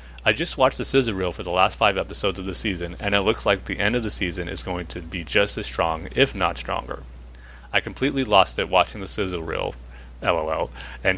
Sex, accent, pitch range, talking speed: male, American, 75-105 Hz, 230 wpm